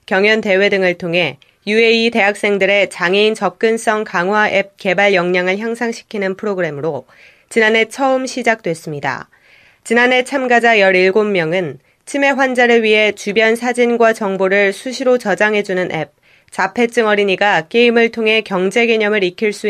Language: Korean